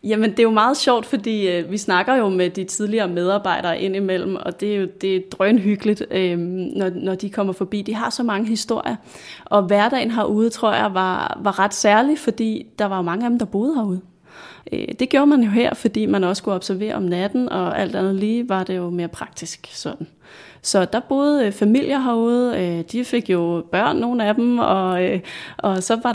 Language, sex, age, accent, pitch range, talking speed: Danish, female, 30-49, native, 185-225 Hz, 215 wpm